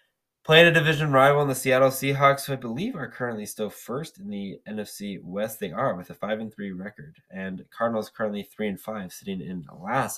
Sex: male